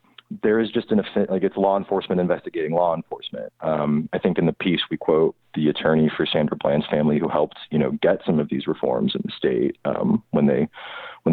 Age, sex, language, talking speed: 30-49, male, English, 220 wpm